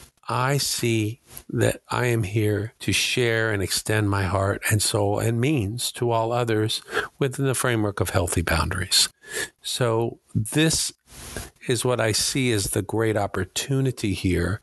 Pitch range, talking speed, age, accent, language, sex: 105-120 Hz, 150 wpm, 50-69, American, English, male